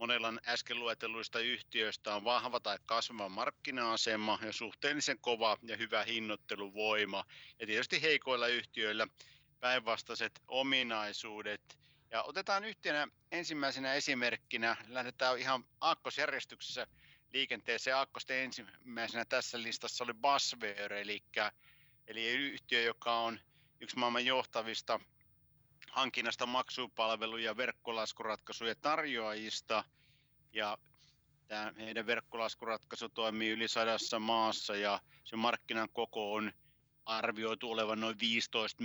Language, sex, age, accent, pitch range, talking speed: Finnish, male, 60-79, native, 105-120 Hz, 100 wpm